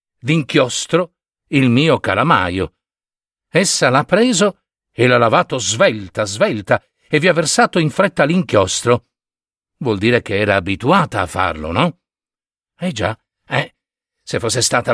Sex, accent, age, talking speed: male, native, 60-79, 135 wpm